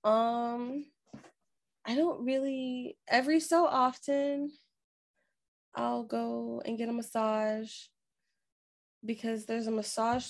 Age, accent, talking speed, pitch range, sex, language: 20-39, American, 100 wpm, 195-235 Hz, female, English